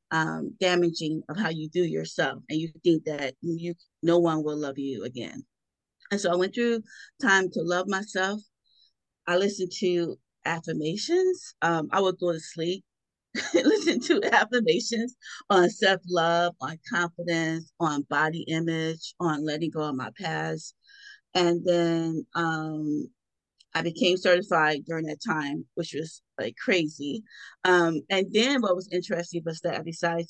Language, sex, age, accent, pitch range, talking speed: English, female, 30-49, American, 160-190 Hz, 150 wpm